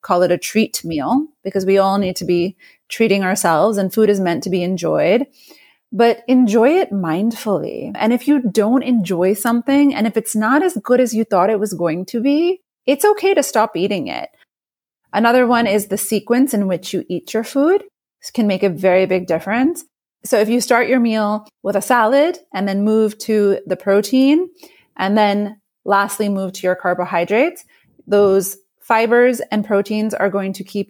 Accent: American